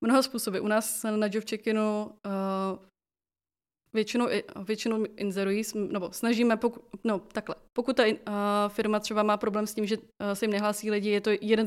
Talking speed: 175 wpm